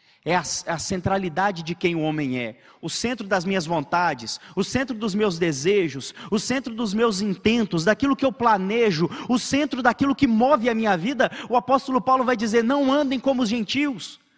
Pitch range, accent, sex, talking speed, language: 170-255 Hz, Brazilian, male, 190 wpm, Portuguese